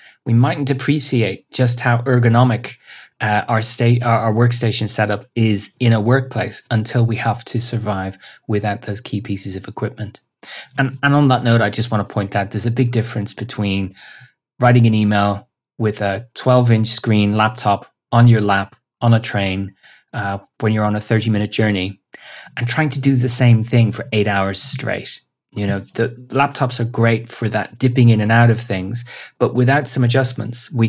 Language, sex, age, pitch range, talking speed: English, male, 30-49, 105-125 Hz, 185 wpm